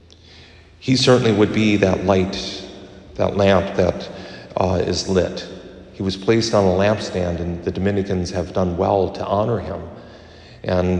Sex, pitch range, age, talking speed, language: male, 90-100 Hz, 50-69, 155 wpm, English